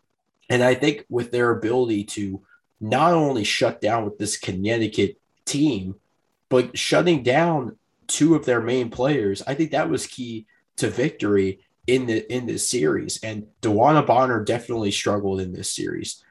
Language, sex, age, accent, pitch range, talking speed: English, male, 20-39, American, 105-125 Hz, 160 wpm